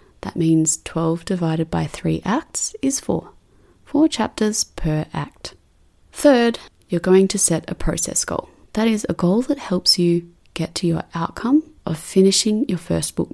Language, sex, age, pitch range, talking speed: English, female, 30-49, 165-200 Hz, 165 wpm